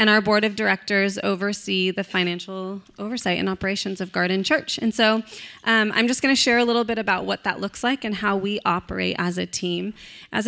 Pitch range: 180-210 Hz